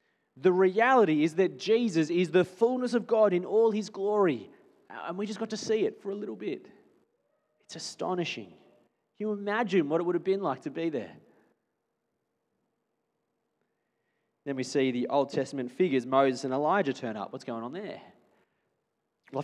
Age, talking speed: 30-49, 175 wpm